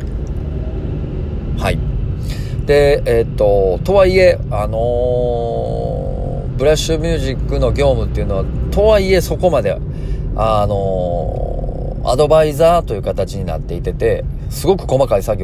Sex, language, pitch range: male, Japanese, 85-135 Hz